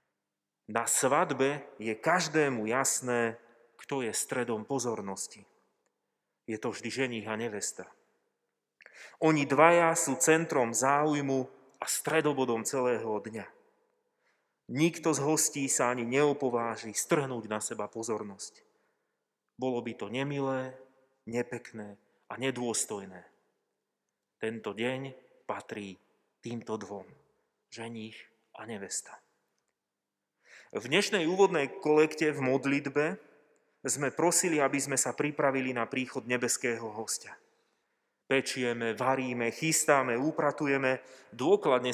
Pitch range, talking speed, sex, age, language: 115-150 Hz, 100 wpm, male, 30-49, Slovak